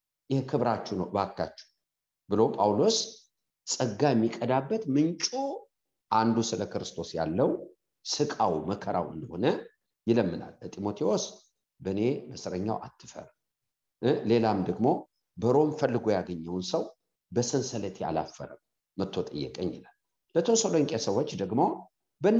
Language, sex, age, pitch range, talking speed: English, male, 50-69, 115-190 Hz, 45 wpm